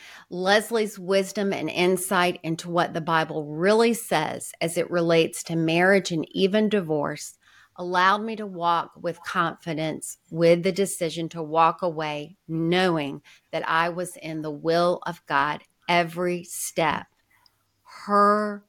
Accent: American